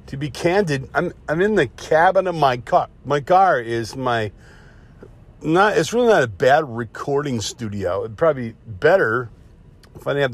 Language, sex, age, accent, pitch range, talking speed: English, male, 50-69, American, 115-160 Hz, 180 wpm